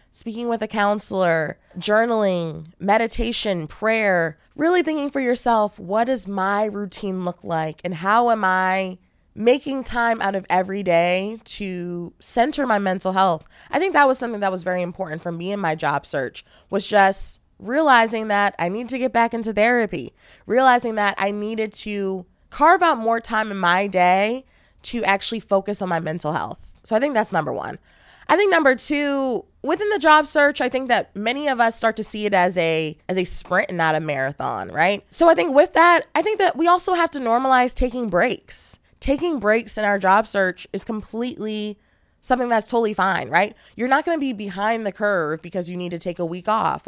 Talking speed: 200 wpm